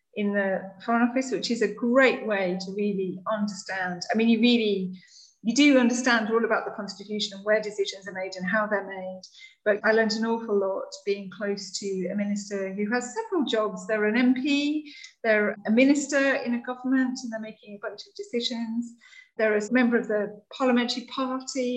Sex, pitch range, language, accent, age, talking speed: female, 200-250 Hz, English, British, 30-49, 195 wpm